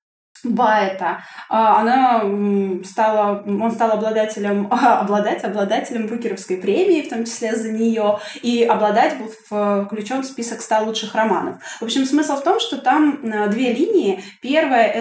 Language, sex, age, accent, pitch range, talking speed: Russian, female, 20-39, native, 215-260 Hz, 140 wpm